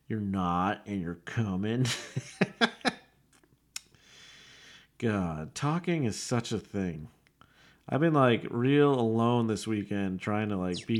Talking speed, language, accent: 120 wpm, English, American